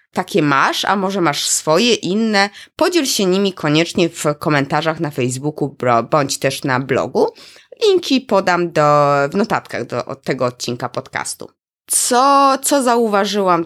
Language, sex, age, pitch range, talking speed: Polish, female, 20-39, 145-200 Hz, 130 wpm